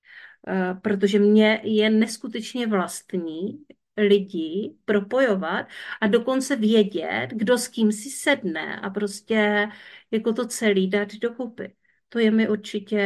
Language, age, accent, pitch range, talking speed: Czech, 40-59, native, 195-235 Hz, 120 wpm